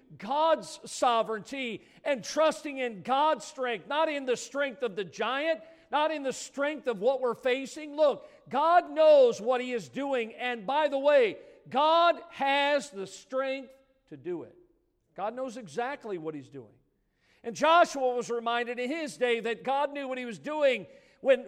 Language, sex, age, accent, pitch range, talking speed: English, male, 50-69, American, 235-285 Hz, 170 wpm